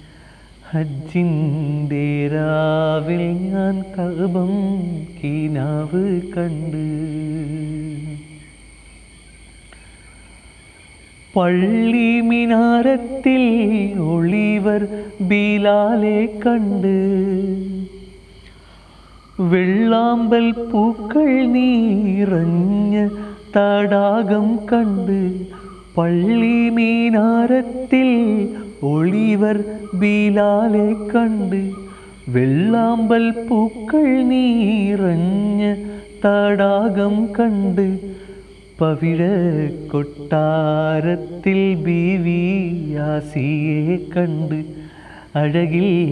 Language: Malayalam